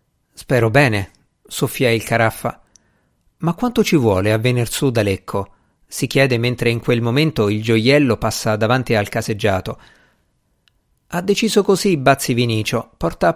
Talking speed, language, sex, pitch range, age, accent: 145 wpm, Italian, male, 110-150 Hz, 50-69, native